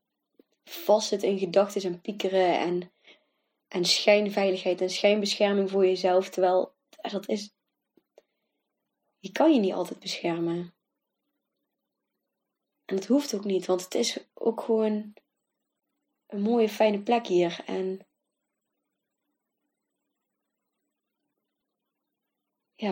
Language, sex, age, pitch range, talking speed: Dutch, female, 20-39, 190-220 Hz, 100 wpm